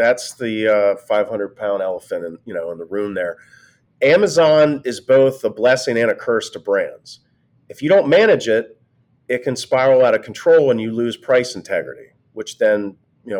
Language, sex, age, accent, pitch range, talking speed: English, male, 40-59, American, 115-175 Hz, 195 wpm